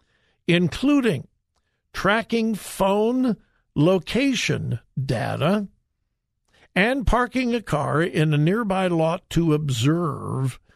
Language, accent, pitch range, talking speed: English, American, 145-200 Hz, 85 wpm